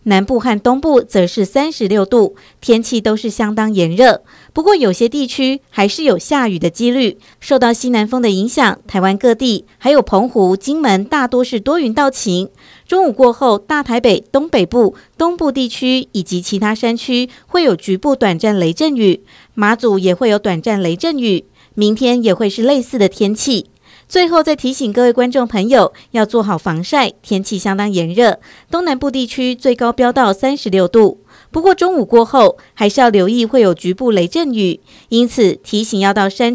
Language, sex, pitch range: Chinese, female, 195-260 Hz